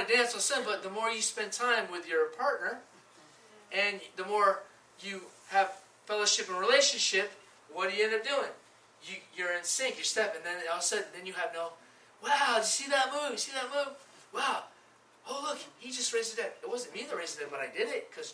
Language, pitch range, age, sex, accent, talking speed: English, 190-245 Hz, 30-49, male, American, 230 wpm